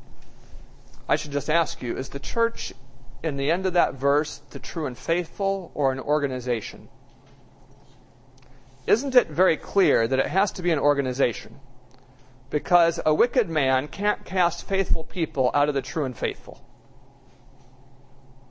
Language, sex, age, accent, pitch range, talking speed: English, male, 40-59, American, 130-160 Hz, 150 wpm